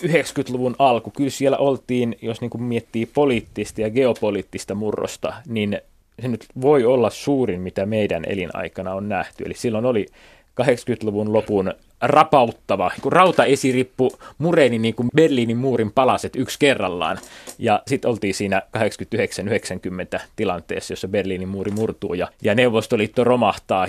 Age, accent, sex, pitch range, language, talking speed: 20-39, native, male, 100-130 Hz, Finnish, 130 wpm